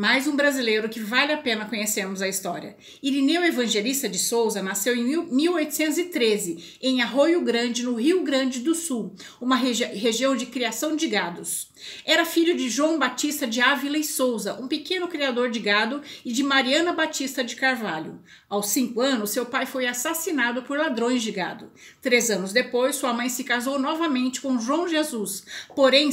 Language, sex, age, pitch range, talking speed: Portuguese, female, 50-69, 235-295 Hz, 170 wpm